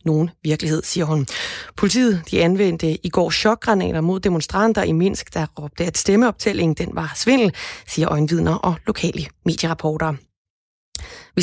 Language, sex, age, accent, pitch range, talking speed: Danish, female, 30-49, native, 165-205 Hz, 140 wpm